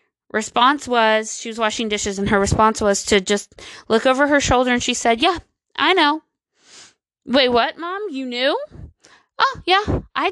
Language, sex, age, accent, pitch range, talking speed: English, female, 20-39, American, 215-260 Hz, 175 wpm